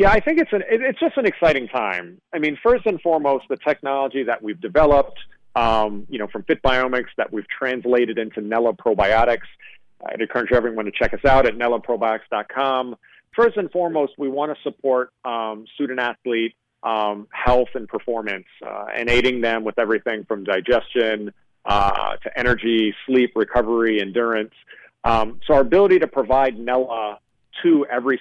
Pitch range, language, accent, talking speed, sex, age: 115-145 Hz, English, American, 160 wpm, male, 40-59